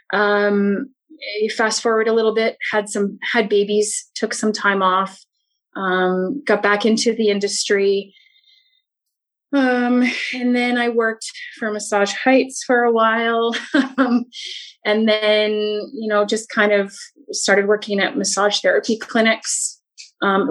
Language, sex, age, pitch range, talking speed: English, female, 30-49, 195-255 Hz, 135 wpm